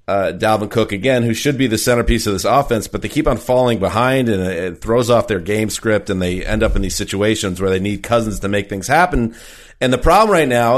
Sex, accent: male, American